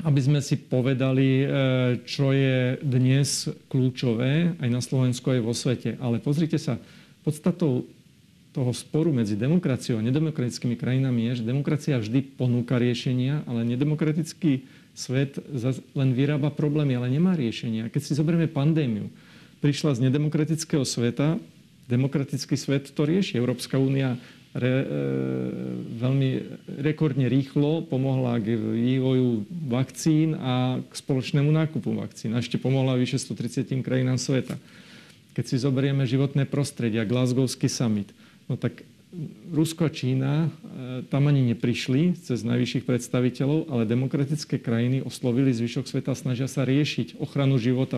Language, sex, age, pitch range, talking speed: Slovak, male, 40-59, 125-145 Hz, 130 wpm